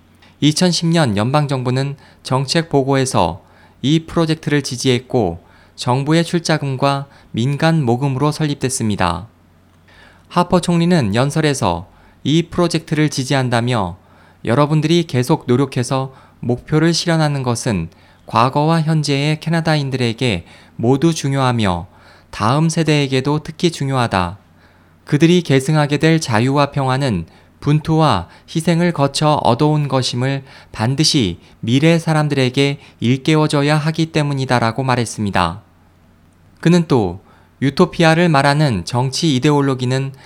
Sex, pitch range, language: male, 105-155 Hz, Korean